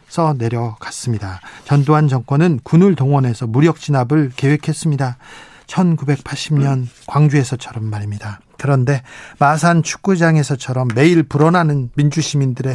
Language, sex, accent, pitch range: Korean, male, native, 130-155 Hz